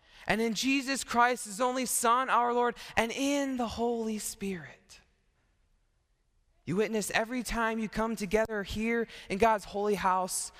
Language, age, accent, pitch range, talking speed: English, 20-39, American, 195-255 Hz, 145 wpm